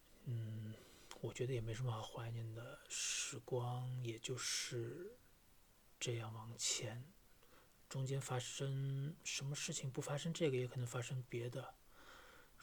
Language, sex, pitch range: Chinese, male, 120-135 Hz